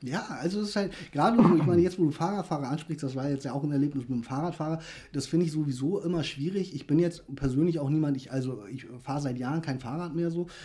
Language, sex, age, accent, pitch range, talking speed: German, male, 30-49, German, 140-165 Hz, 255 wpm